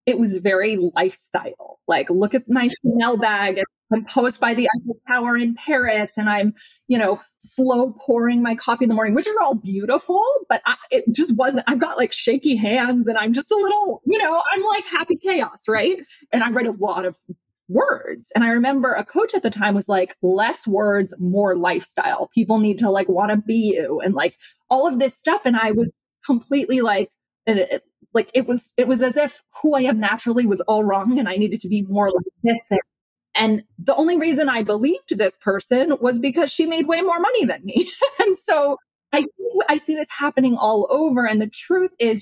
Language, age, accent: English, 20-39, American